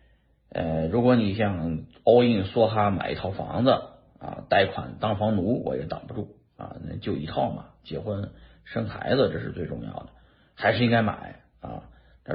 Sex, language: male, Chinese